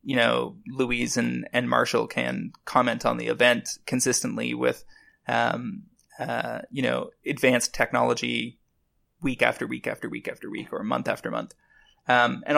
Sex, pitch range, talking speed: male, 120-135 Hz, 155 wpm